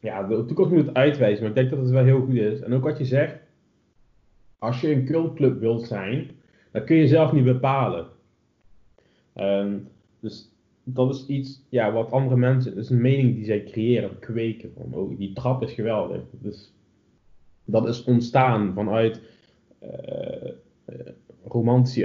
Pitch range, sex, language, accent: 105-125 Hz, male, Dutch, Dutch